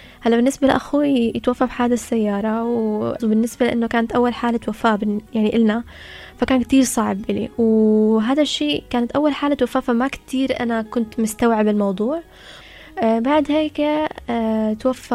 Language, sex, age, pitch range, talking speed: Arabic, female, 20-39, 215-245 Hz, 130 wpm